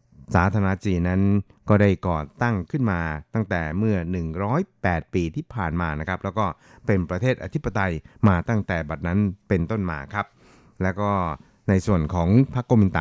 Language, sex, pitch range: Thai, male, 85-105 Hz